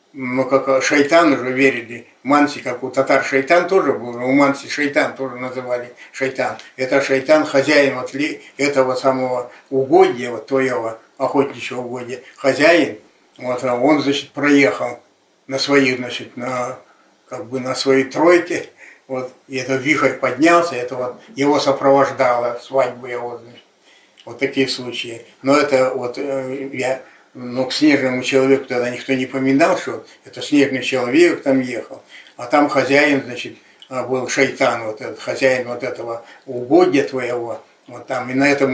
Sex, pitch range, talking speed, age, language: male, 125-140 Hz, 150 wpm, 60-79, Russian